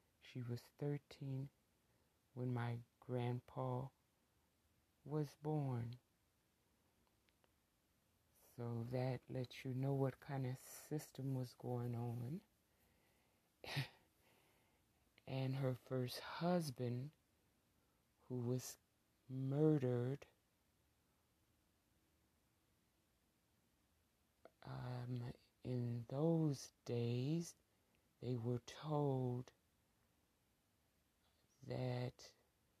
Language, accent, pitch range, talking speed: English, American, 120-145 Hz, 65 wpm